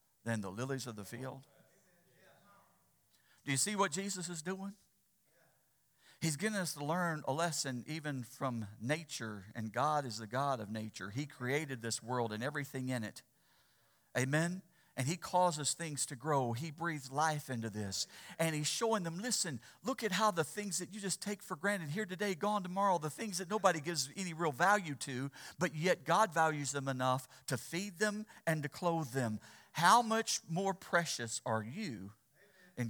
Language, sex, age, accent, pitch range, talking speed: English, male, 50-69, American, 130-190 Hz, 180 wpm